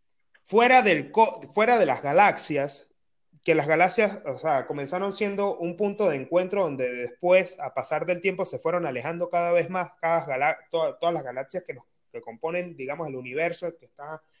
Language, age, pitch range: Spanish, 30-49, 155-210 Hz